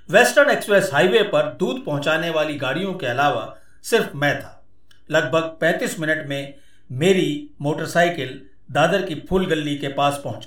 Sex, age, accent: male, 50-69, native